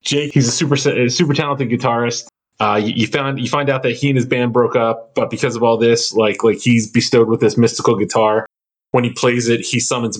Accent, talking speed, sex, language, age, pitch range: American, 240 wpm, male, English, 20-39, 115-130 Hz